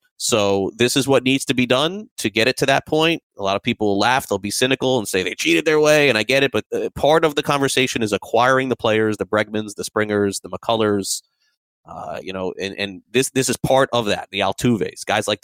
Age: 30-49